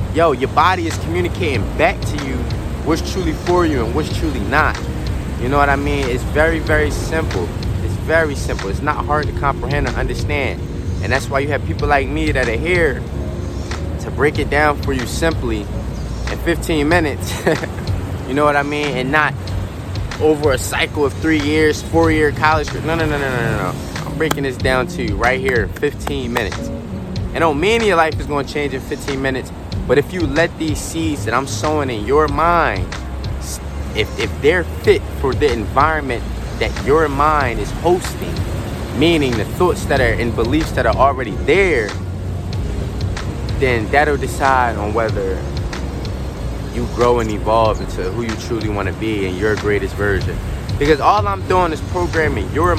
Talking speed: 185 wpm